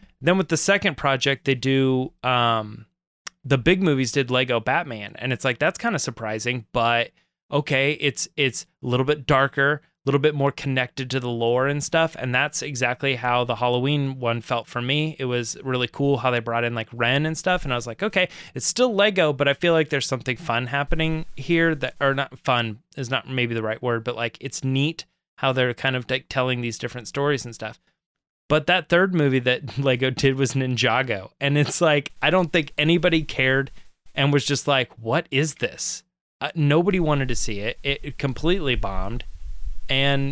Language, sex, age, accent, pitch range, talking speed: English, male, 20-39, American, 120-145 Hz, 205 wpm